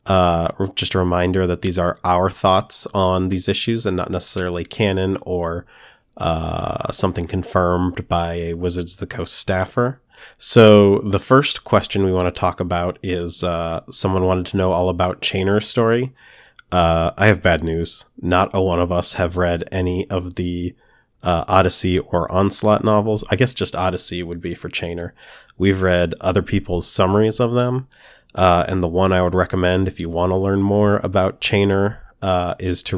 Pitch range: 85-100 Hz